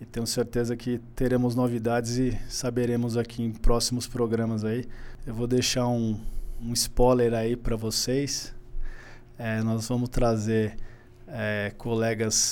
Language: Portuguese